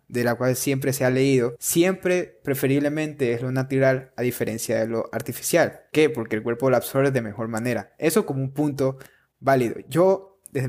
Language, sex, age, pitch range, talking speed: Spanish, male, 20-39, 120-150 Hz, 185 wpm